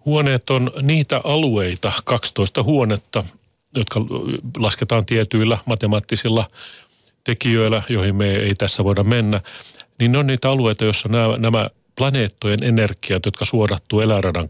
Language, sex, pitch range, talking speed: Finnish, male, 105-120 Hz, 125 wpm